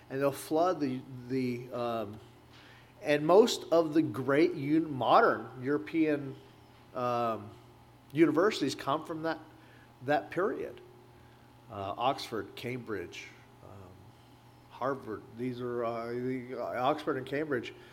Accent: American